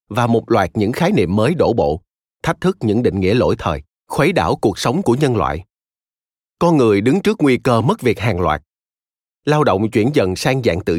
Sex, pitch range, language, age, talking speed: male, 85-130 Hz, Vietnamese, 30-49, 220 wpm